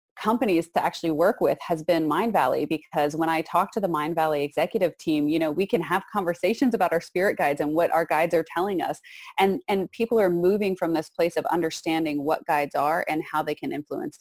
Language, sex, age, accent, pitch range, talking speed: English, female, 30-49, American, 155-190 Hz, 230 wpm